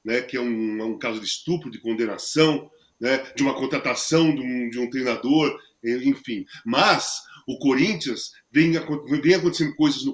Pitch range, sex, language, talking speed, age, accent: 165-255 Hz, male, Portuguese, 160 wpm, 40-59, Brazilian